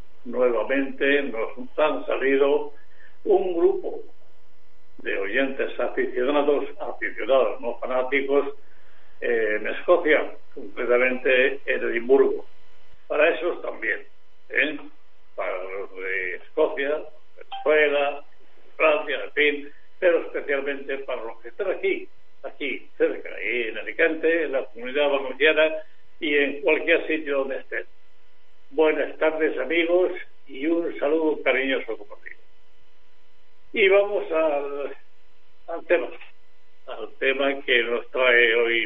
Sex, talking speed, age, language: male, 110 wpm, 60-79, Spanish